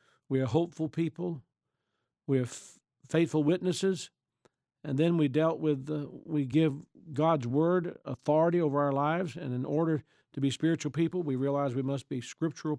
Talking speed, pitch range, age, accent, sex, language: 170 wpm, 135-165 Hz, 50-69, American, male, English